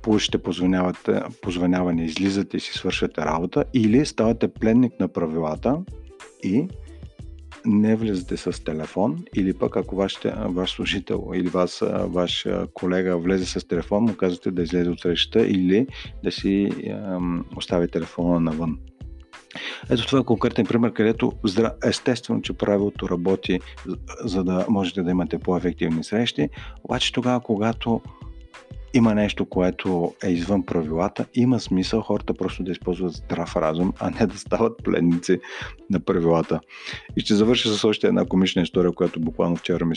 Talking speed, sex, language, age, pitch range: 145 wpm, male, Bulgarian, 50-69, 85-105 Hz